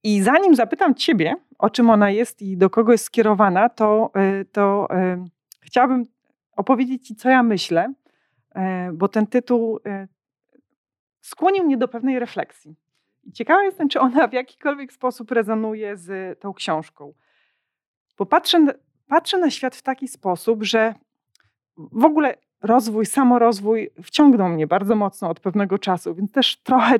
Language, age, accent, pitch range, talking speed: Polish, 40-59, native, 200-260 Hz, 150 wpm